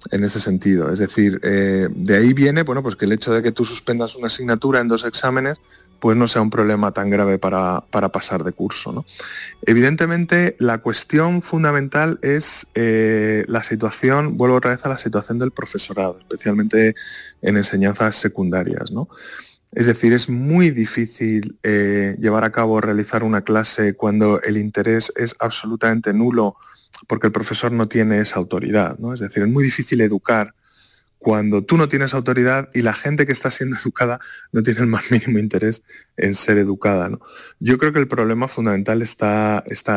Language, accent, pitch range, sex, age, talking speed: Spanish, Spanish, 105-125 Hz, male, 20-39, 170 wpm